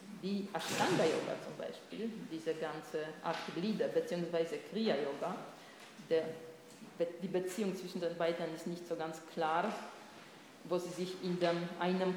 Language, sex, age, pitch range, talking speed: German, female, 40-59, 170-205 Hz, 140 wpm